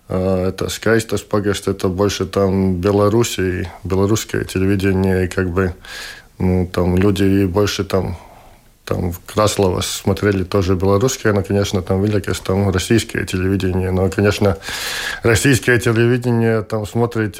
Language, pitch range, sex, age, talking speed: Russian, 100-110 Hz, male, 20-39, 115 wpm